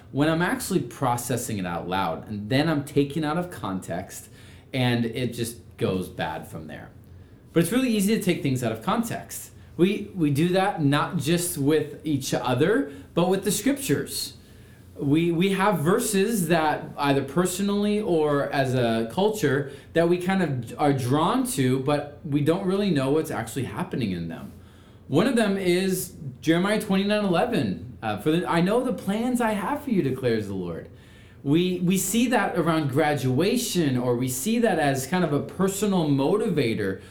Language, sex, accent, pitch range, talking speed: English, male, American, 125-185 Hz, 175 wpm